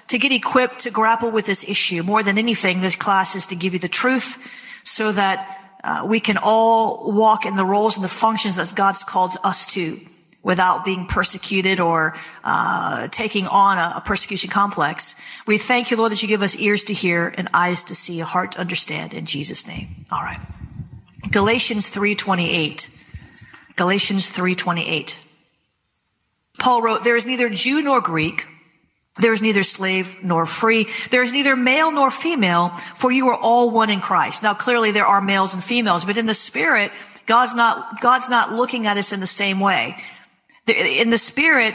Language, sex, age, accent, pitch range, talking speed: English, female, 40-59, American, 190-230 Hz, 180 wpm